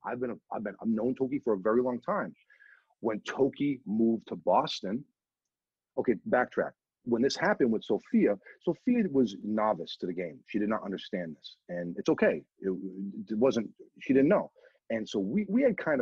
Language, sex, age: English, male, 40-59